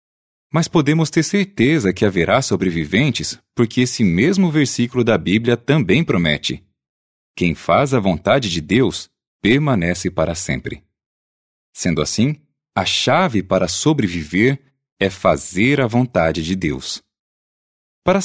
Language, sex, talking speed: Portuguese, male, 120 wpm